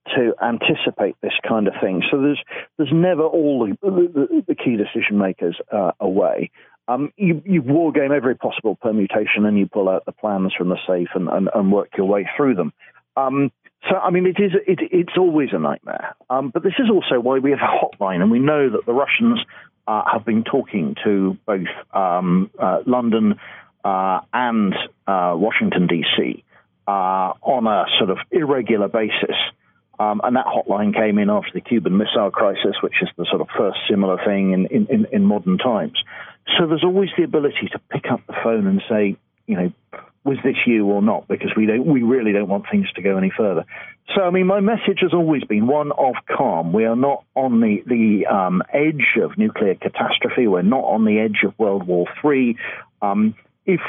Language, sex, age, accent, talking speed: English, male, 40-59, British, 200 wpm